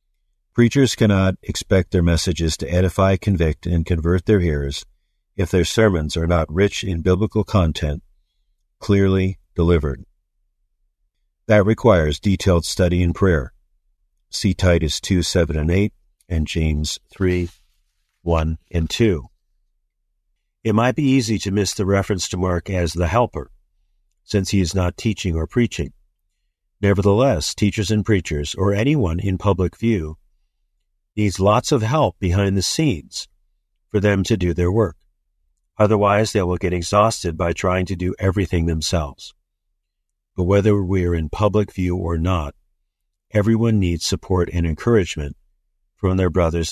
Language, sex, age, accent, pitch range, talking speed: English, male, 50-69, American, 85-100 Hz, 145 wpm